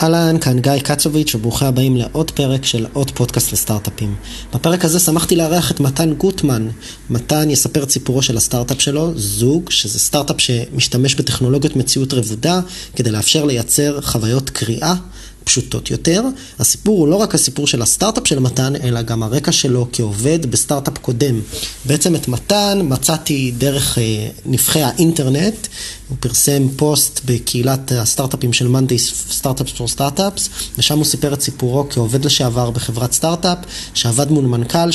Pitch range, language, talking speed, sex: 120-150 Hz, Hebrew, 145 wpm, male